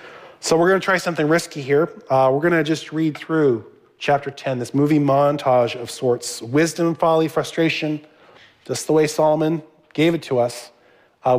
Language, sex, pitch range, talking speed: English, male, 125-160 Hz, 180 wpm